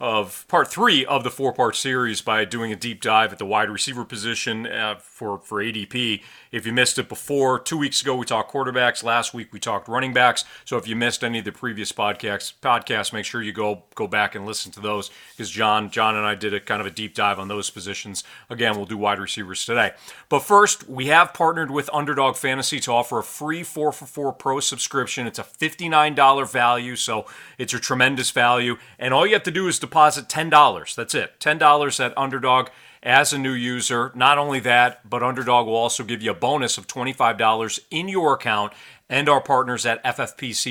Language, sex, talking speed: English, male, 215 wpm